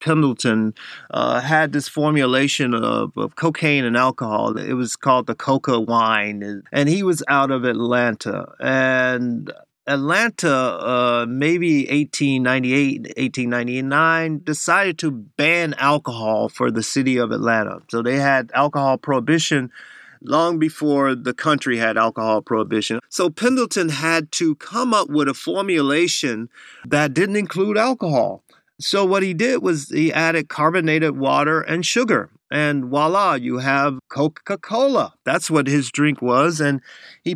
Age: 30-49